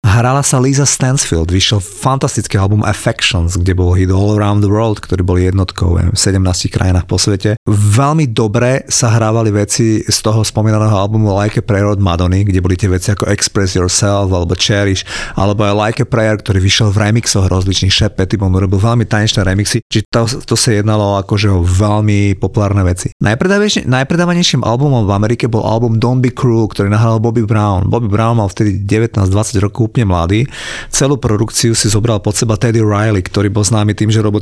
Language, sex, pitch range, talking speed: Slovak, male, 100-115 Hz, 185 wpm